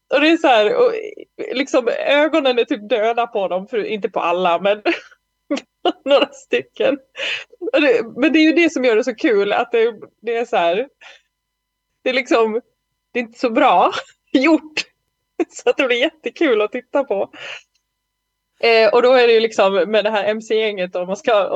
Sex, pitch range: female, 225-370 Hz